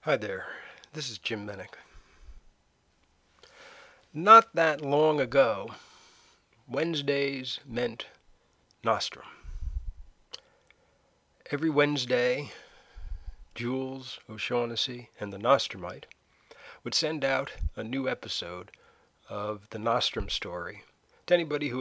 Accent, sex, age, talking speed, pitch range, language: American, male, 40-59, 90 wpm, 110-150 Hz, English